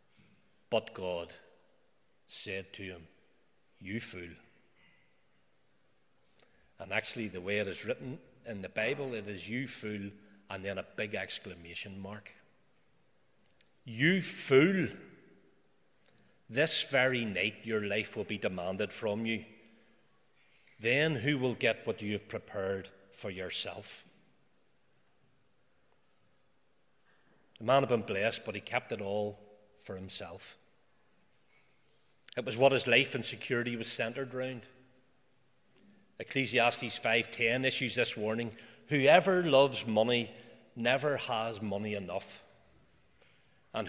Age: 40-59